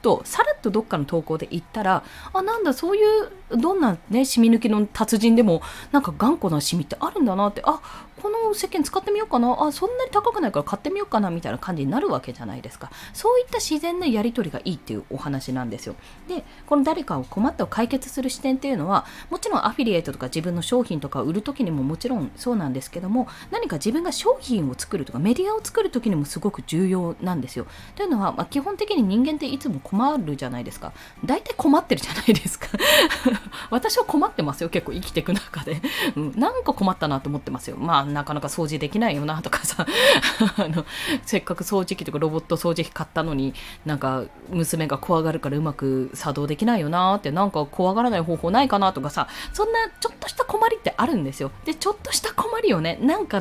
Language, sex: Japanese, female